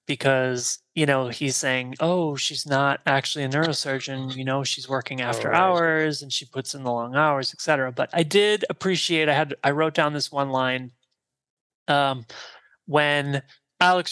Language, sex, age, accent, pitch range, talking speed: English, male, 20-39, American, 140-180 Hz, 170 wpm